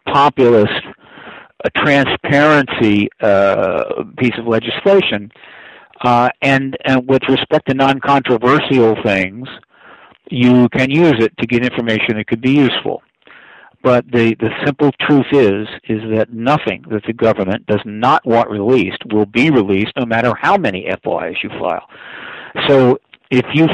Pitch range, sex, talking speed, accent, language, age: 110-140 Hz, male, 140 wpm, American, English, 60-79